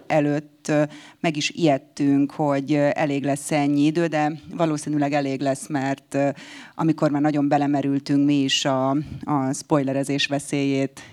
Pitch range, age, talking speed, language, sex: 140-155 Hz, 30-49, 130 wpm, Hungarian, female